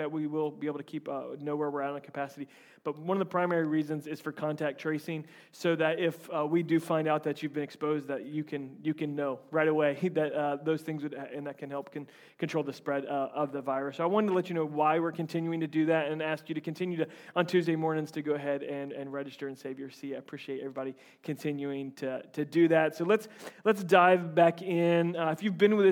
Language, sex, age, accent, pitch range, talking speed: English, male, 30-49, American, 150-185 Hz, 260 wpm